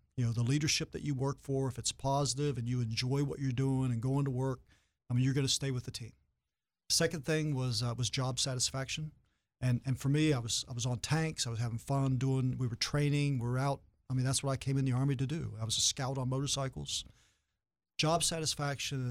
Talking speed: 240 wpm